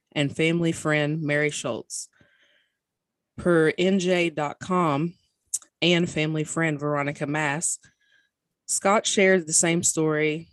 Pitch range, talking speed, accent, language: 145-165 Hz, 95 wpm, American, English